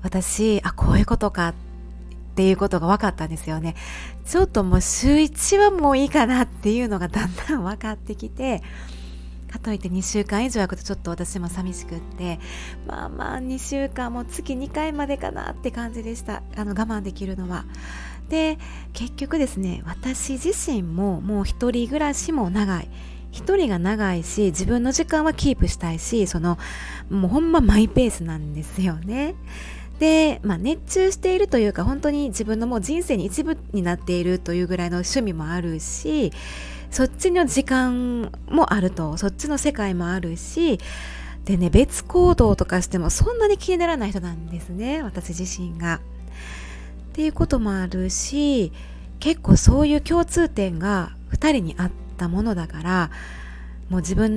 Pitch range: 175-275 Hz